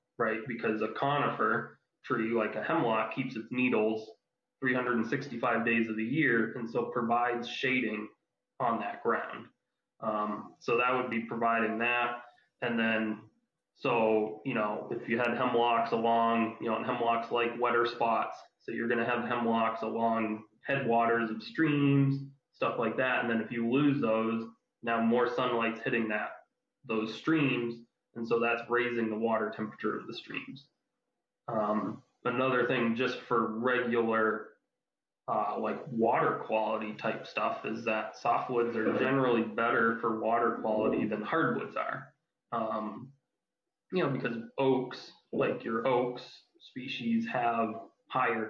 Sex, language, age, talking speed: male, English, 20-39, 145 wpm